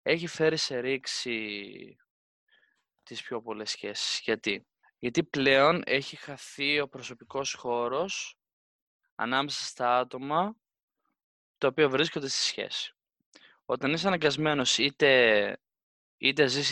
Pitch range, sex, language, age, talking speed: 120-140 Hz, male, Greek, 20-39, 110 wpm